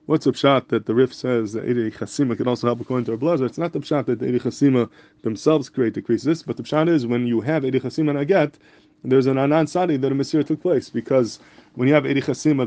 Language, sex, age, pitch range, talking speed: English, male, 30-49, 120-150 Hz, 255 wpm